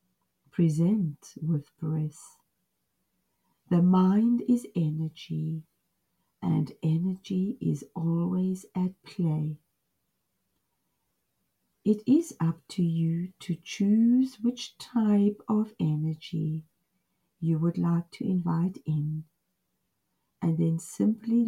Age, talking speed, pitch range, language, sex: 50-69, 90 wpm, 155-190 Hz, English, female